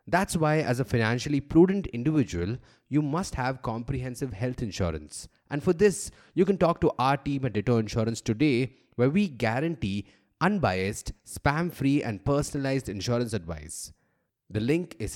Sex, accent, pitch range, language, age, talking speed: male, Indian, 100-135 Hz, English, 30-49, 155 wpm